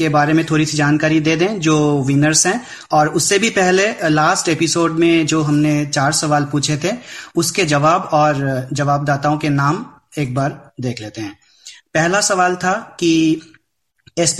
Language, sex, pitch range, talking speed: Hindi, male, 145-165 Hz, 165 wpm